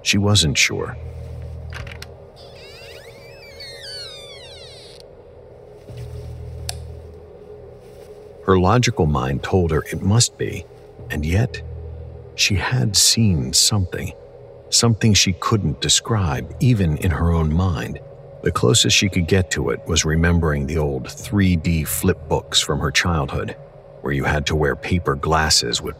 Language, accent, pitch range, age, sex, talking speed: English, American, 80-105 Hz, 50-69, male, 120 wpm